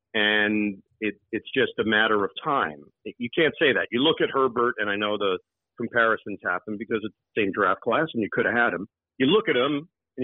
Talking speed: 230 wpm